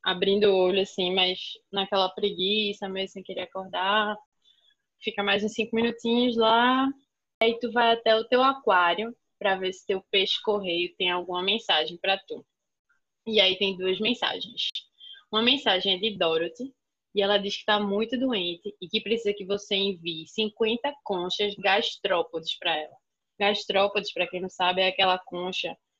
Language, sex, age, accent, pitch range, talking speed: Portuguese, female, 20-39, Brazilian, 190-230 Hz, 165 wpm